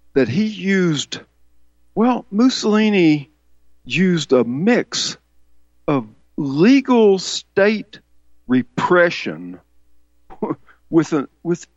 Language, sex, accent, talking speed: English, male, American, 75 wpm